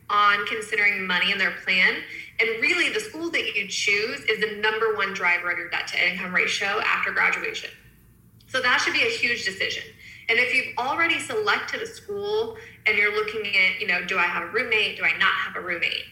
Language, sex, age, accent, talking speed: English, female, 20-39, American, 210 wpm